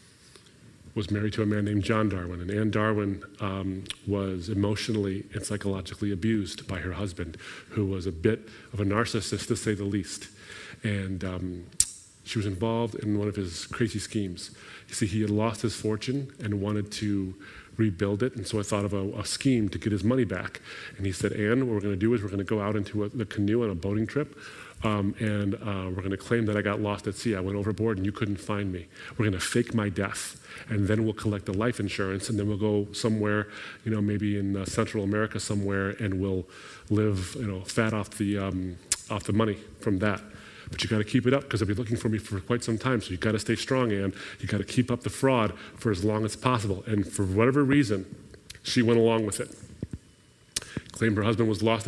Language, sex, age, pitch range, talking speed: English, male, 30-49, 100-115 Hz, 230 wpm